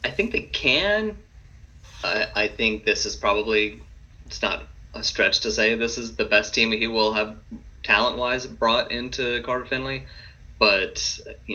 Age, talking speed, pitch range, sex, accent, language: 30-49, 165 wpm, 100-125 Hz, male, American, English